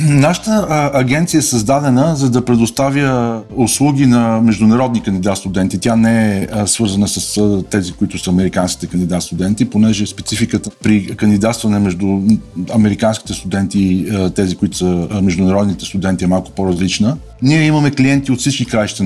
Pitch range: 105-135 Hz